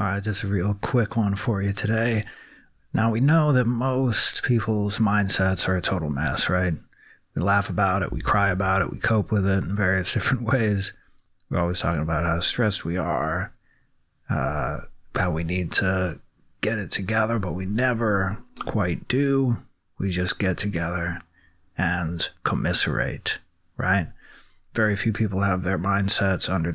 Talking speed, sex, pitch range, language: 165 wpm, male, 95-110 Hz, English